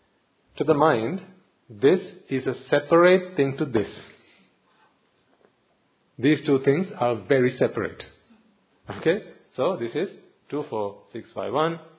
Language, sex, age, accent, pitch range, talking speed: English, male, 50-69, Indian, 120-155 Hz, 105 wpm